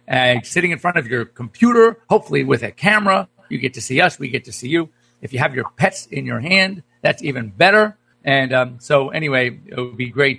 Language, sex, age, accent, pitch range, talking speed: English, male, 50-69, American, 125-160 Hz, 230 wpm